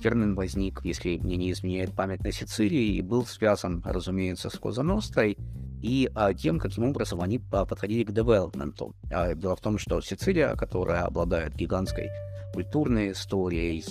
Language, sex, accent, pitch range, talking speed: Ukrainian, male, native, 90-110 Hz, 145 wpm